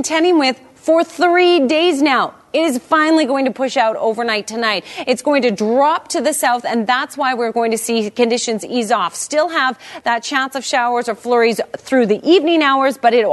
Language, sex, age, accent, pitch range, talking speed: English, female, 30-49, American, 220-285 Hz, 205 wpm